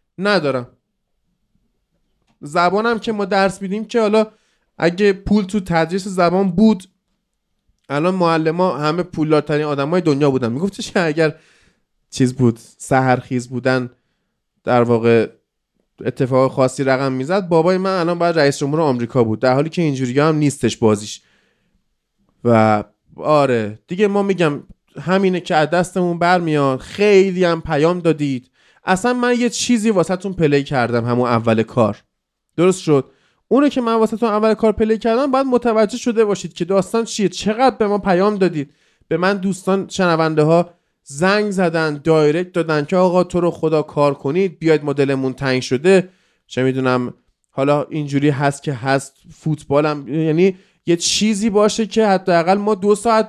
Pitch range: 140-205 Hz